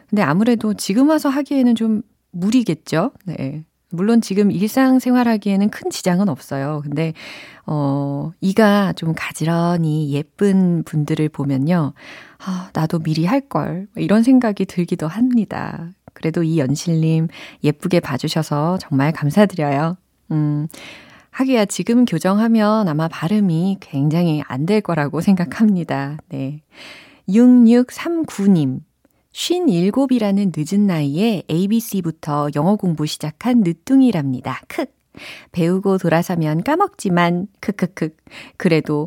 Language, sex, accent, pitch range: Korean, female, native, 150-215 Hz